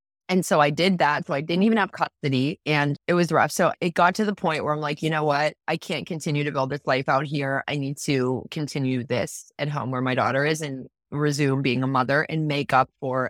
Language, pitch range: English, 140-175 Hz